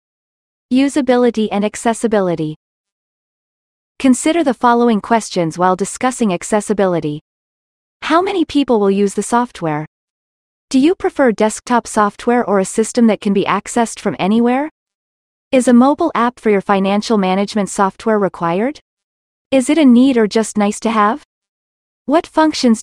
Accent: American